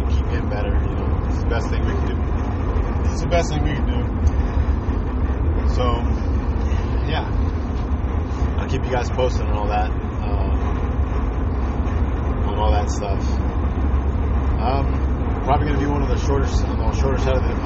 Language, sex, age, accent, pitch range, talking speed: English, male, 30-49, American, 70-80 Hz, 165 wpm